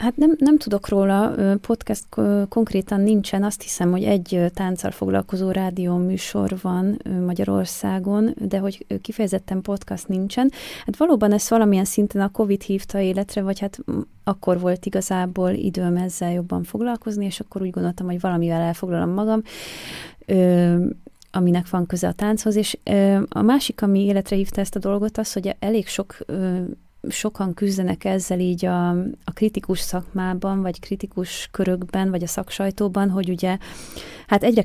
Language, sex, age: Hungarian, female, 30-49